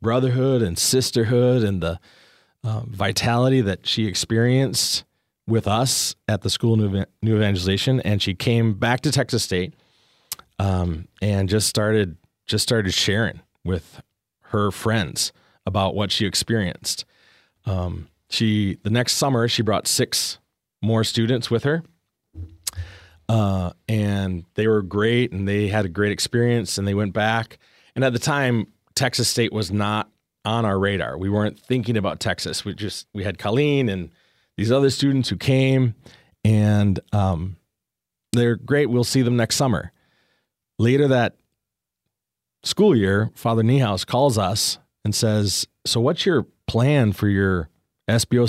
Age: 30-49